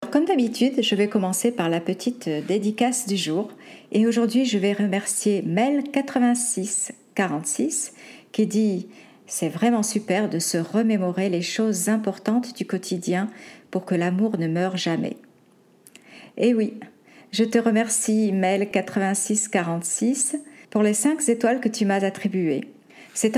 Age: 50-69